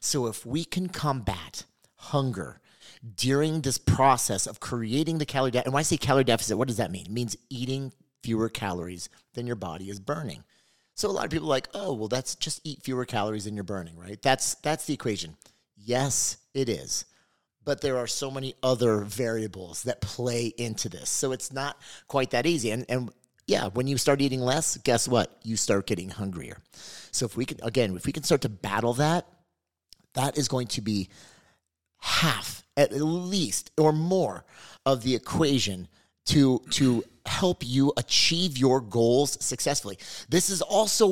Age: 30-49